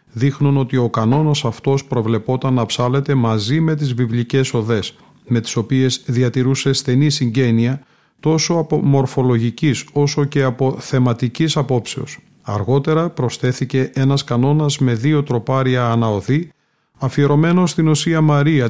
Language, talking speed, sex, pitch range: Greek, 125 wpm, male, 120-145 Hz